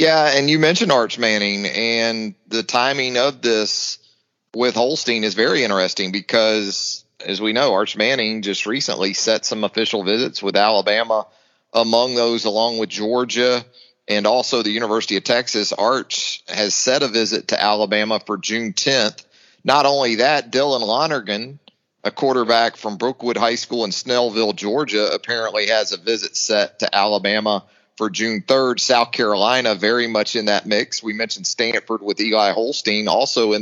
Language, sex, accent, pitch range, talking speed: English, male, American, 110-165 Hz, 160 wpm